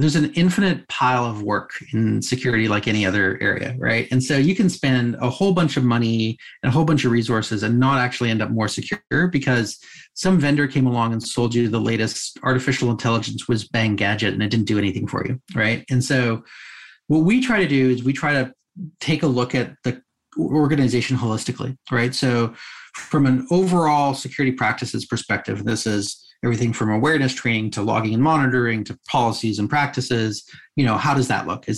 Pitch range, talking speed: 115-140 Hz, 200 wpm